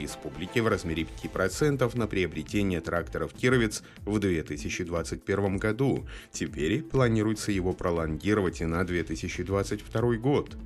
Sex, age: male, 30-49